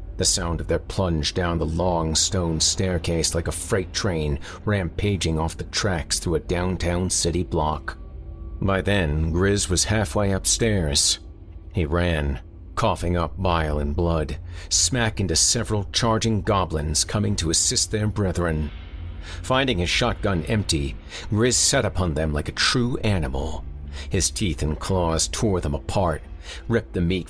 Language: English